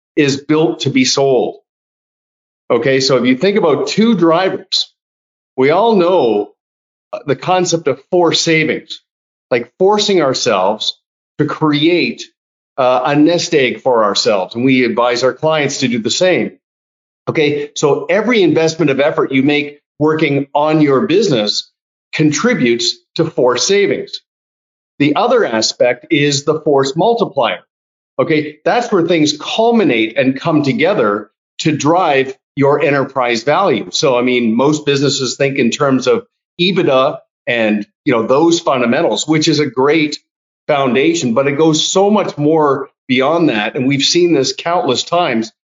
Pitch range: 130-175 Hz